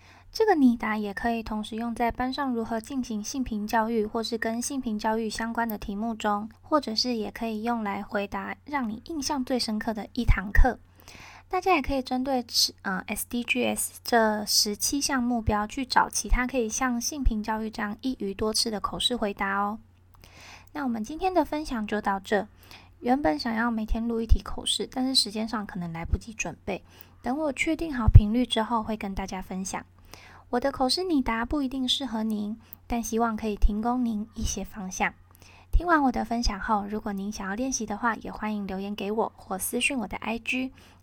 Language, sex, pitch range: Chinese, female, 210-255 Hz